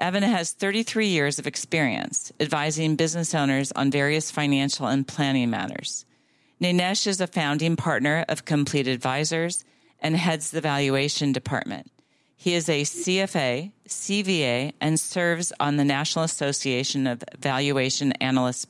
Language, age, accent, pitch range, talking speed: English, 40-59, American, 140-165 Hz, 135 wpm